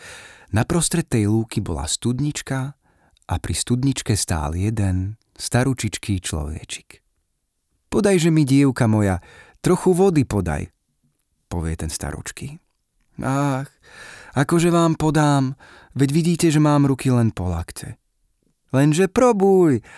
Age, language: 30-49, Slovak